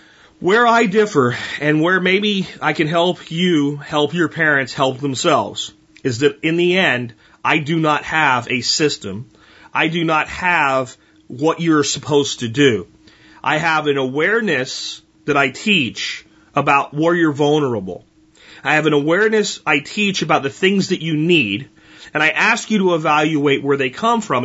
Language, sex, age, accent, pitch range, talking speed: English, male, 30-49, American, 145-205 Hz, 165 wpm